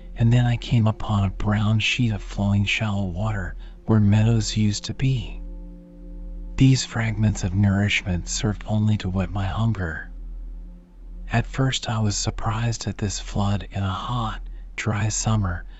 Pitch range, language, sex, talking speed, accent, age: 95-110 Hz, English, male, 150 wpm, American, 40-59